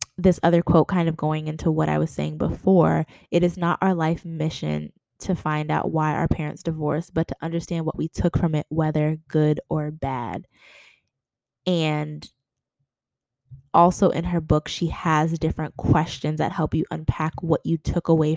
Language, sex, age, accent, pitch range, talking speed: English, female, 20-39, American, 155-175 Hz, 175 wpm